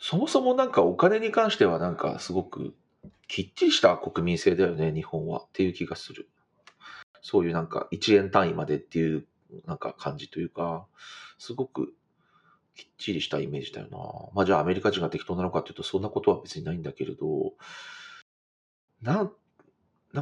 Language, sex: Japanese, male